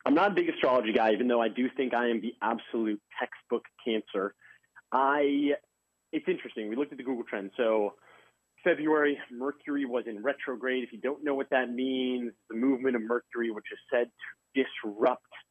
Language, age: English, 30-49